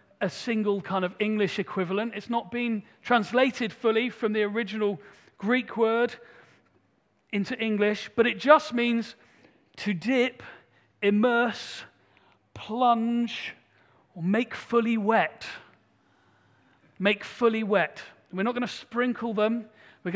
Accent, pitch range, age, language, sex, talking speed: British, 180-235 Hz, 40-59, English, male, 120 wpm